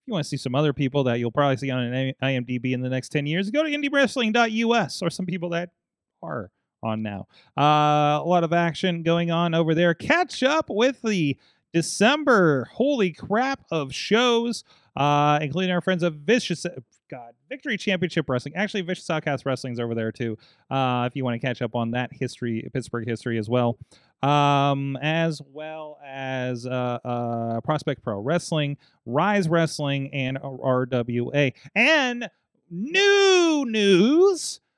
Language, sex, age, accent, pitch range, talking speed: English, male, 30-49, American, 135-205 Hz, 160 wpm